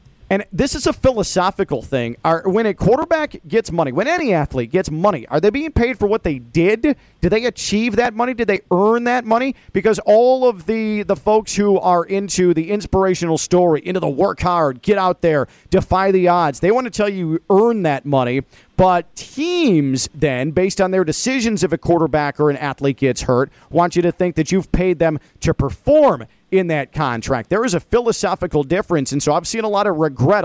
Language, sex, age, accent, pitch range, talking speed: English, male, 40-59, American, 155-210 Hz, 210 wpm